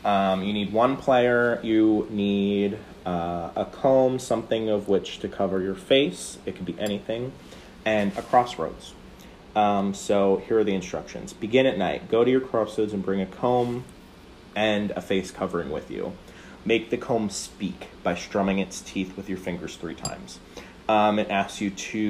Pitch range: 95-115 Hz